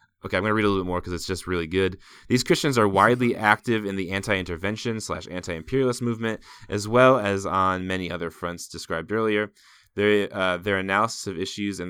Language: English